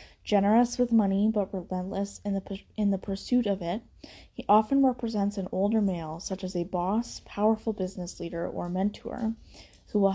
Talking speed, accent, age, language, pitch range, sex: 165 wpm, American, 10-29, English, 170-210 Hz, female